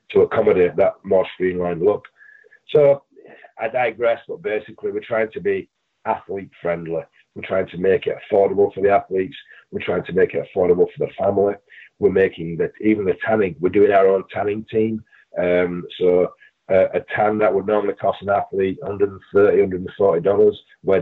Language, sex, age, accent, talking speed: English, male, 40-59, British, 190 wpm